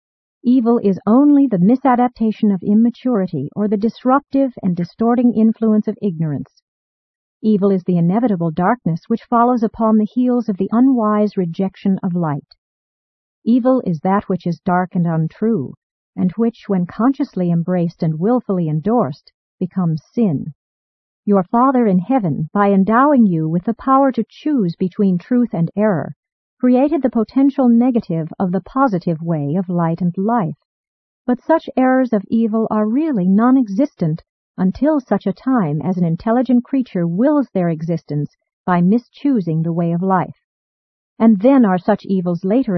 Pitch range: 175-245 Hz